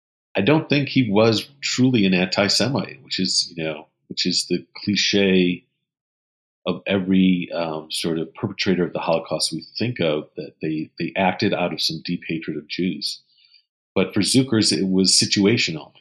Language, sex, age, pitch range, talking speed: English, male, 40-59, 85-100 Hz, 170 wpm